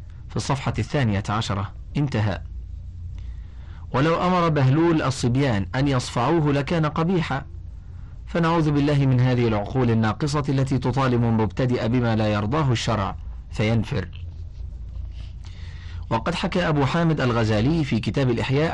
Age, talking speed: 40-59, 110 wpm